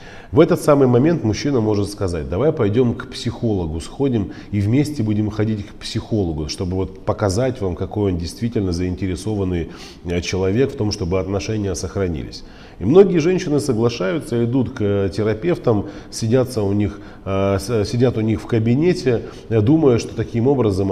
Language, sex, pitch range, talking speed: Russian, male, 95-125 Hz, 135 wpm